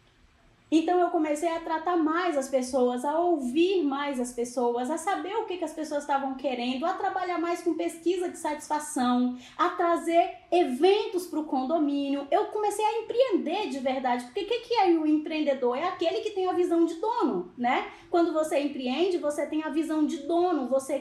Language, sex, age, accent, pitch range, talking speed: Portuguese, female, 20-39, Brazilian, 265-335 Hz, 190 wpm